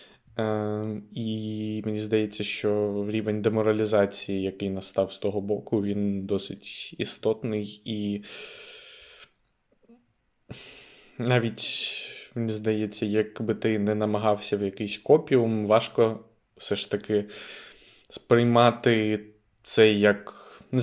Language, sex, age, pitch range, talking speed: Ukrainian, male, 20-39, 100-110 Hz, 100 wpm